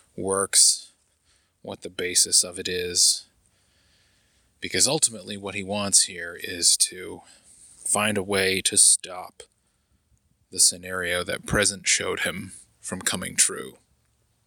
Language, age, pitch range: English, 20-39, 95-105 Hz